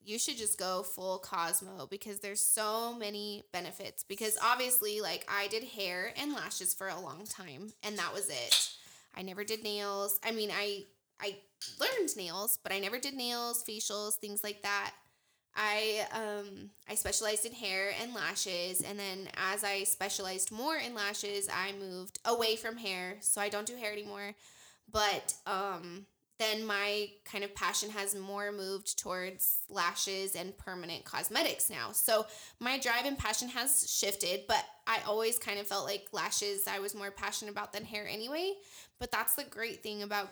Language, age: English, 20-39